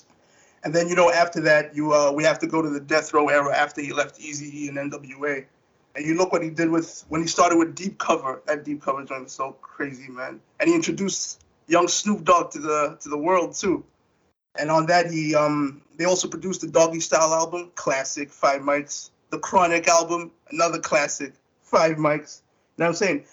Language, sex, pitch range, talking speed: English, male, 155-200 Hz, 215 wpm